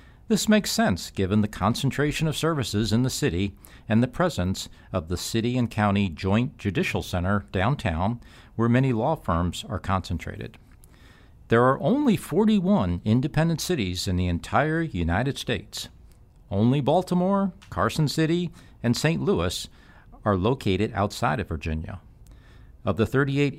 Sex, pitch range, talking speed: male, 95-140 Hz, 140 wpm